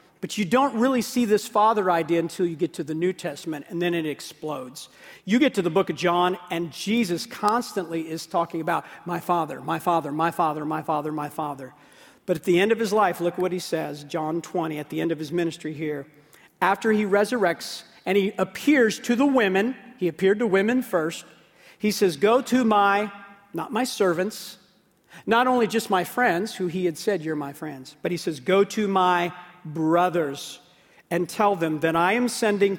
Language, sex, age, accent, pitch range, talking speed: English, male, 50-69, American, 165-205 Hz, 200 wpm